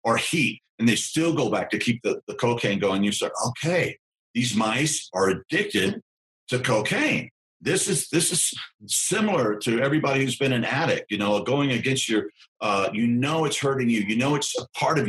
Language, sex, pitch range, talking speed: English, male, 105-125 Hz, 200 wpm